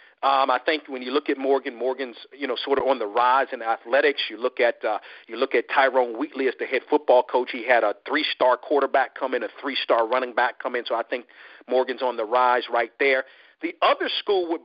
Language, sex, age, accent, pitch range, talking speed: English, male, 50-69, American, 140-225 Hz, 240 wpm